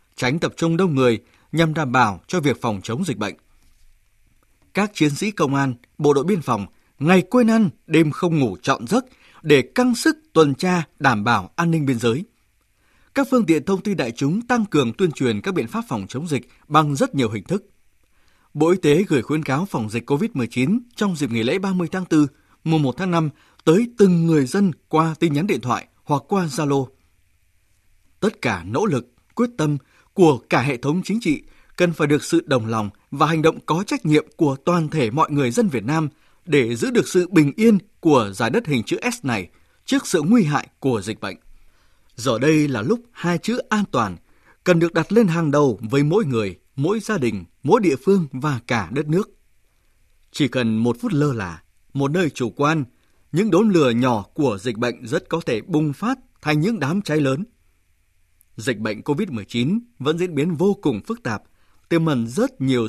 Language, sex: Vietnamese, male